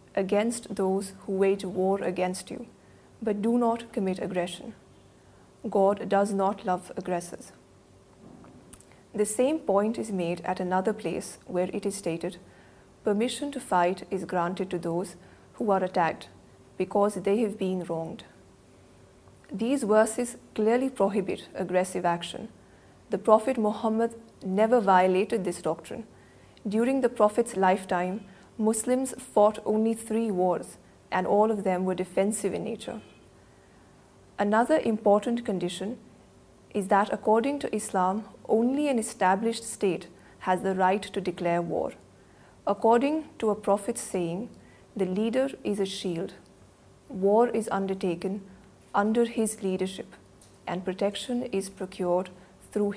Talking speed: 130 wpm